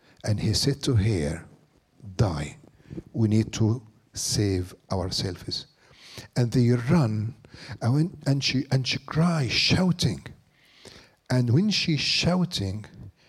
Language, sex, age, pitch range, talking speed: English, male, 60-79, 115-155 Hz, 115 wpm